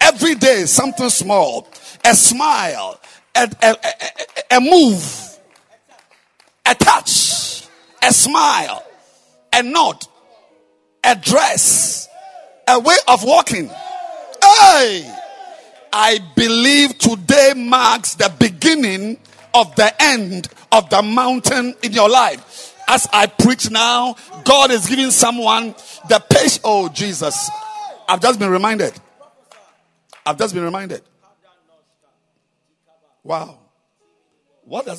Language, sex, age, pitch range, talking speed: English, male, 50-69, 185-285 Hz, 105 wpm